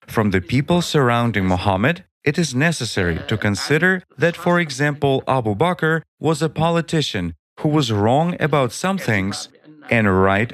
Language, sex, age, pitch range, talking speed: English, male, 40-59, 105-155 Hz, 150 wpm